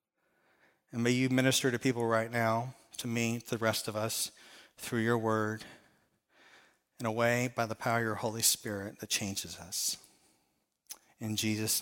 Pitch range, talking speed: 115-170 Hz, 170 wpm